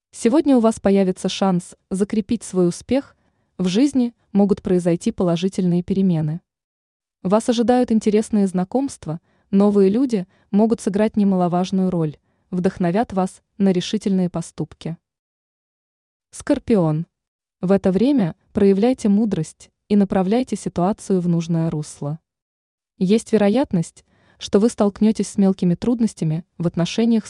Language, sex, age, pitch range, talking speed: Russian, female, 20-39, 175-225 Hz, 110 wpm